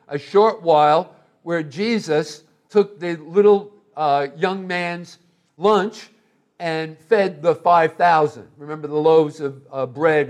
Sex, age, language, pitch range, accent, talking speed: male, 60-79, English, 150-190 Hz, American, 130 wpm